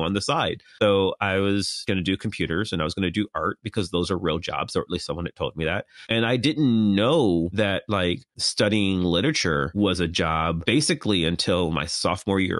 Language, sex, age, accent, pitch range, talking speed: English, male, 30-49, American, 90-105 Hz, 220 wpm